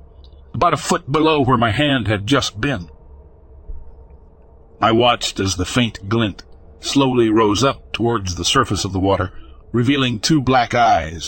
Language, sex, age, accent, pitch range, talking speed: English, male, 60-79, American, 90-135 Hz, 155 wpm